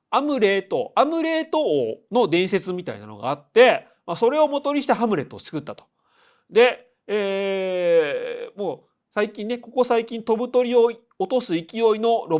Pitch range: 155-225 Hz